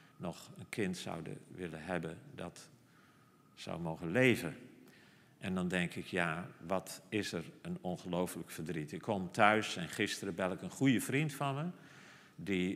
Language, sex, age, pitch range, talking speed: Dutch, male, 50-69, 95-135 Hz, 160 wpm